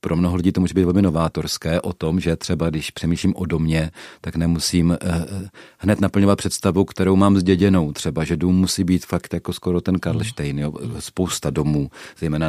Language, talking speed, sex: Czech, 185 wpm, male